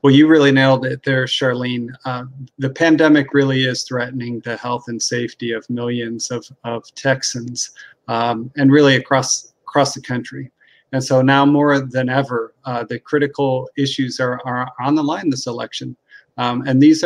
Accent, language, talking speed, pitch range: American, English, 170 wpm, 125-140 Hz